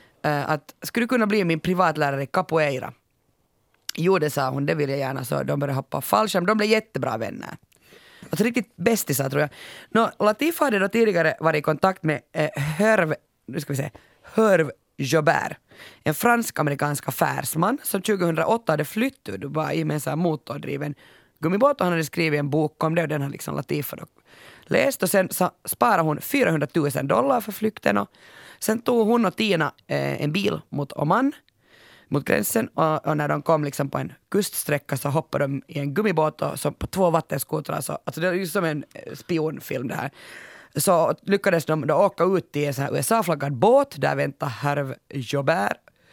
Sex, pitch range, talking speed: female, 145-200 Hz, 185 wpm